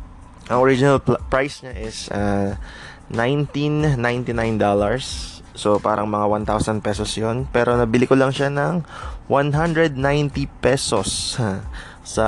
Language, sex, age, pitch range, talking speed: Filipino, male, 20-39, 95-125 Hz, 105 wpm